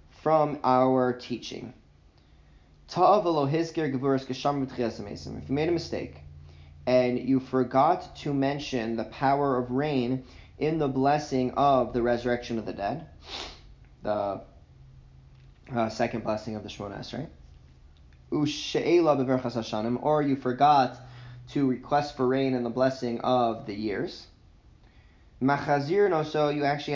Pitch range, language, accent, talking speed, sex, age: 115-150 Hz, English, American, 110 wpm, male, 20-39